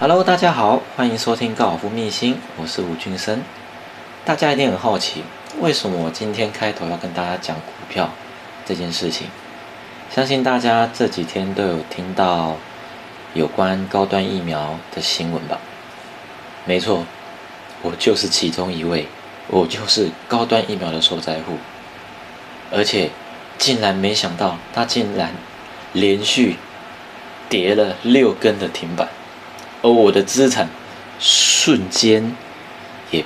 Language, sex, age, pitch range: Chinese, male, 30-49, 85-110 Hz